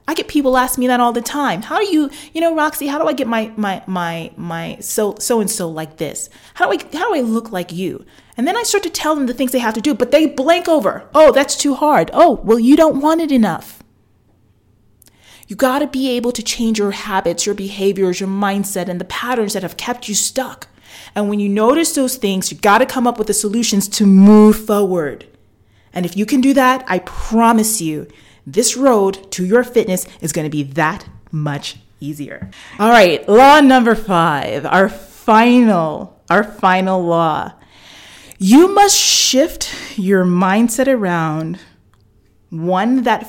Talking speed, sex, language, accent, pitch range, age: 190 wpm, female, English, American, 170-255 Hz, 30-49